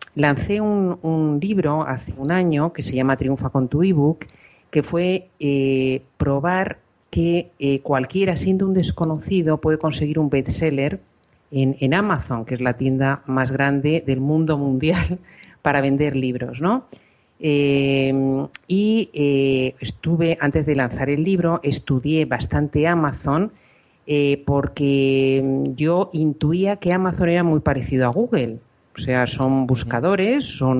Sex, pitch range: female, 135-170 Hz